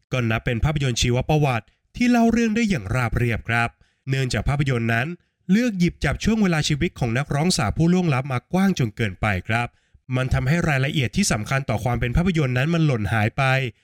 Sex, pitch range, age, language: male, 115-155 Hz, 20-39, Thai